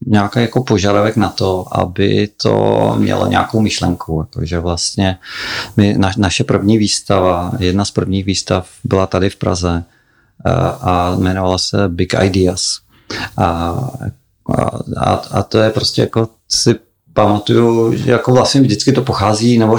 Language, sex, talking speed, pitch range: Czech, male, 140 wpm, 95-115 Hz